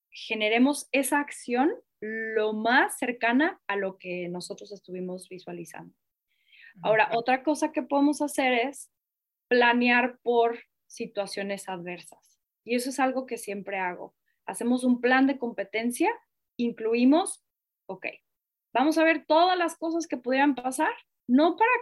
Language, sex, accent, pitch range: Spanish, female, Mexican, 230-310 Hz